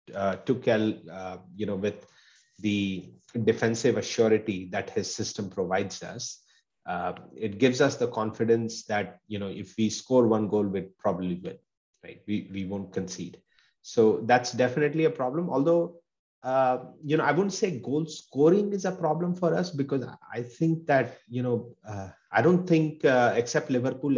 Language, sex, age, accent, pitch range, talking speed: English, male, 30-49, Indian, 105-145 Hz, 165 wpm